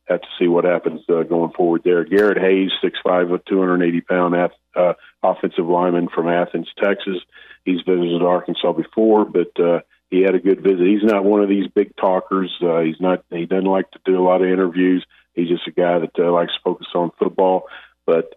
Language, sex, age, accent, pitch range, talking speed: English, male, 40-59, American, 90-105 Hz, 205 wpm